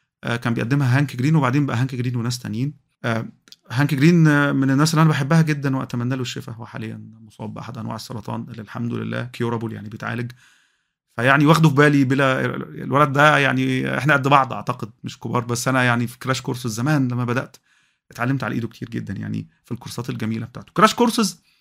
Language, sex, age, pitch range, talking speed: Arabic, male, 30-49, 115-145 Hz, 185 wpm